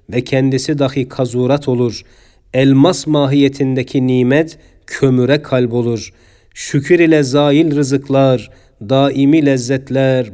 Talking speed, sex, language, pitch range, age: 95 wpm, male, Turkish, 130-145 Hz, 40-59